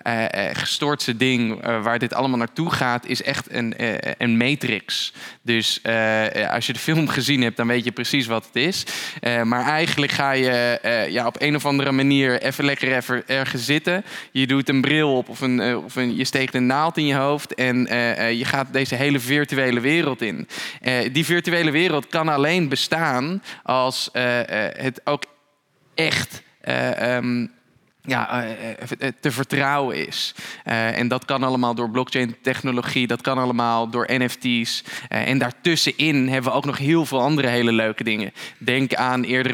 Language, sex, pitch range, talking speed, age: Dutch, male, 120-140 Hz, 180 wpm, 10-29